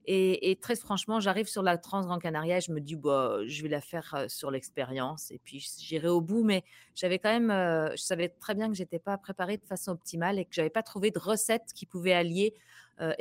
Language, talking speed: French, 255 wpm